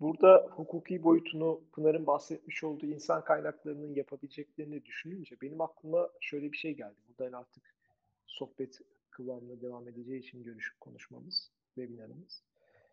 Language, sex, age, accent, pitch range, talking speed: Turkish, male, 40-59, native, 140-175 Hz, 120 wpm